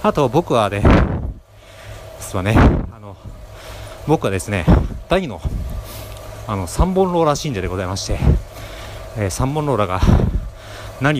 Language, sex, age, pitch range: Japanese, male, 40-59, 95-135 Hz